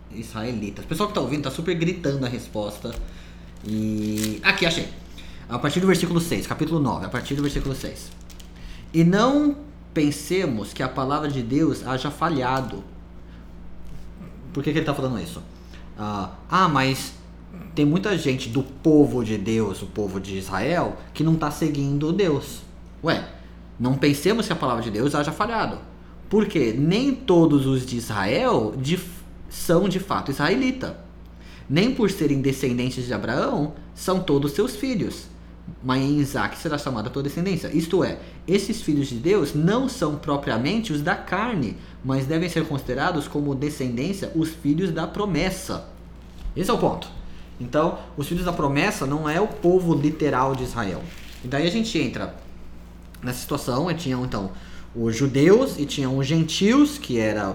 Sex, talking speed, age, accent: male, 160 wpm, 20-39, Brazilian